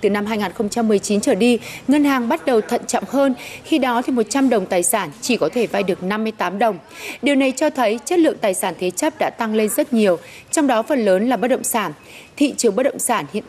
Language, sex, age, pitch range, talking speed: Vietnamese, female, 20-39, 205-260 Hz, 245 wpm